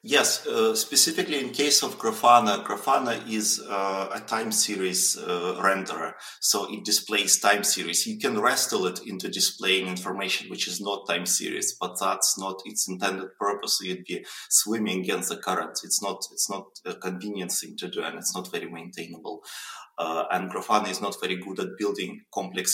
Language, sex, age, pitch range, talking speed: English, male, 30-49, 95-115 Hz, 180 wpm